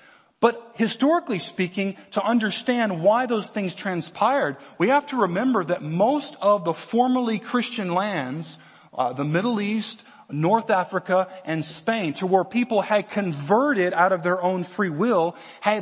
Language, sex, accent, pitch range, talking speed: English, male, American, 160-225 Hz, 150 wpm